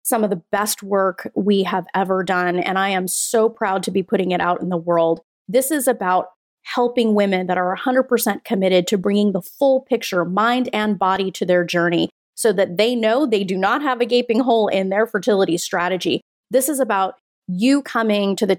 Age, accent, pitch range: 30-49, American, 190-245 Hz